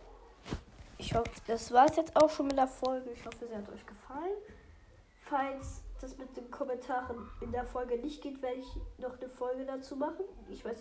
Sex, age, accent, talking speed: female, 20-39, German, 200 wpm